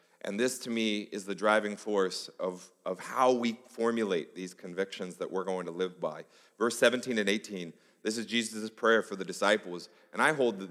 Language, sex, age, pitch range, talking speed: English, male, 30-49, 85-115 Hz, 200 wpm